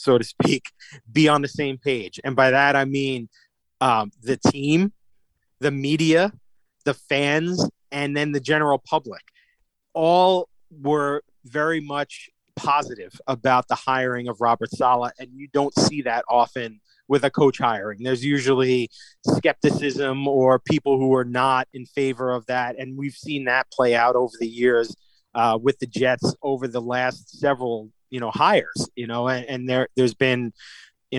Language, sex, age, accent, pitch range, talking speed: English, male, 30-49, American, 125-150 Hz, 165 wpm